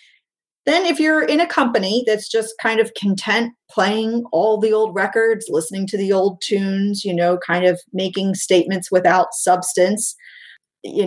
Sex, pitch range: female, 175-220 Hz